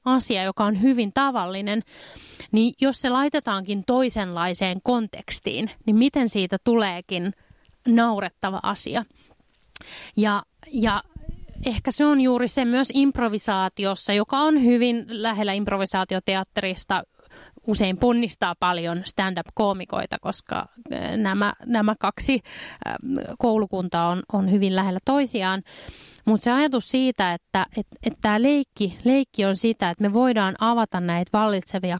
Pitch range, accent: 190-235 Hz, native